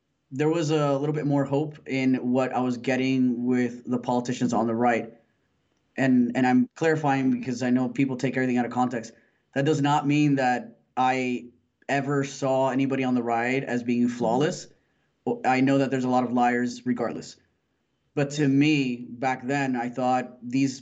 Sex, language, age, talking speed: male, English, 20-39, 180 wpm